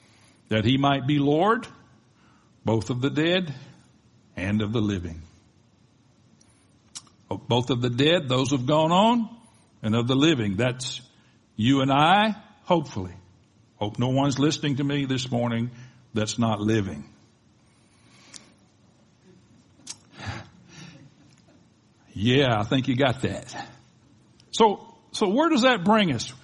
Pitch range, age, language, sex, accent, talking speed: 120-190 Hz, 60-79, English, male, American, 125 wpm